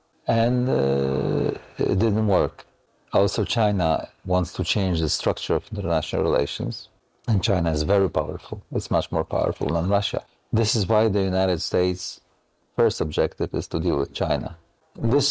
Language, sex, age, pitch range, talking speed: Ukrainian, male, 50-69, 85-110 Hz, 155 wpm